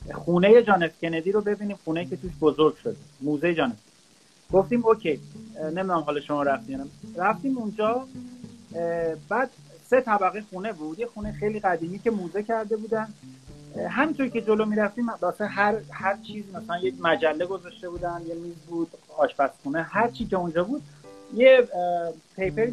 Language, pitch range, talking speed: Persian, 170-225 Hz, 150 wpm